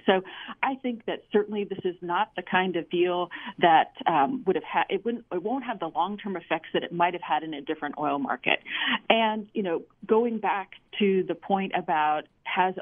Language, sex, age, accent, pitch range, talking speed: English, female, 40-59, American, 160-210 Hz, 200 wpm